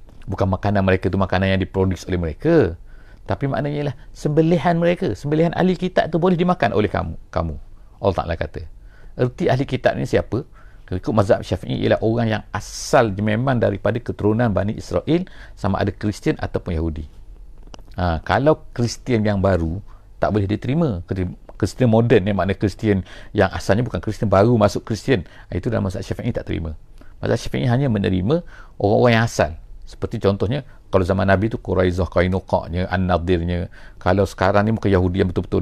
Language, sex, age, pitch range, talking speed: English, male, 50-69, 90-115 Hz, 160 wpm